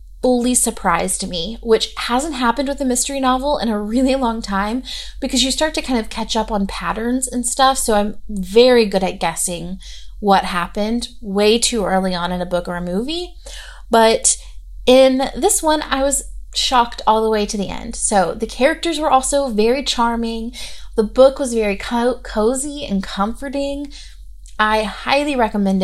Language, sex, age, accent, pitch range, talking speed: English, female, 30-49, American, 200-255 Hz, 175 wpm